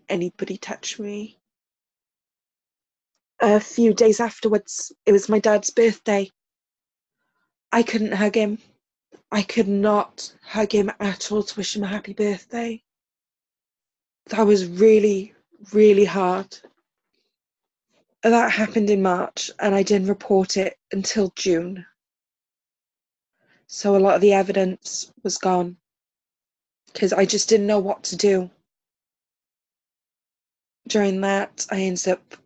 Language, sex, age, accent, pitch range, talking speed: English, female, 20-39, British, 195-220 Hz, 120 wpm